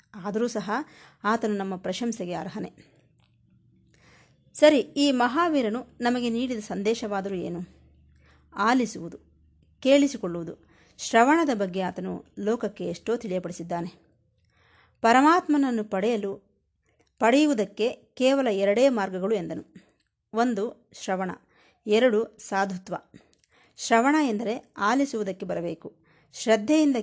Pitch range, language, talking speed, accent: 185-245 Hz, Kannada, 80 wpm, native